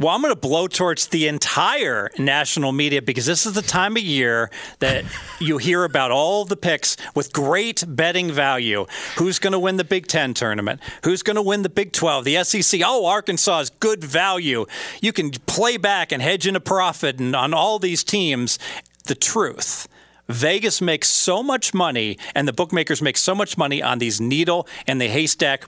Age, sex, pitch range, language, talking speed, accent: 40-59, male, 140-185 Hz, English, 190 wpm, American